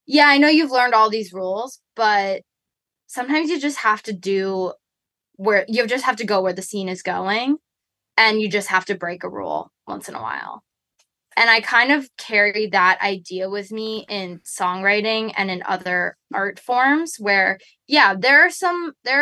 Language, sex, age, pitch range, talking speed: English, female, 10-29, 195-230 Hz, 185 wpm